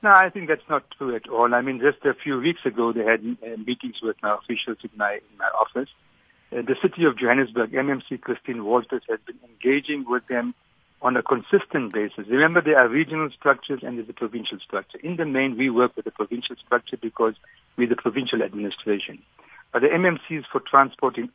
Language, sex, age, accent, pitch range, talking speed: English, male, 60-79, Indian, 115-150 Hz, 200 wpm